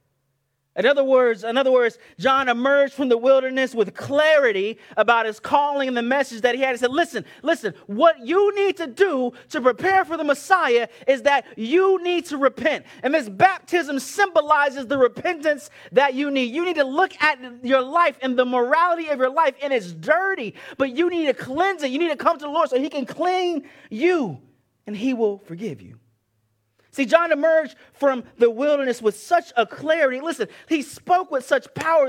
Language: English